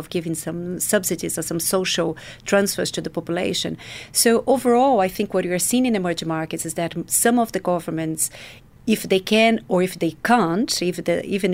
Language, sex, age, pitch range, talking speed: English, female, 40-59, 170-205 Hz, 180 wpm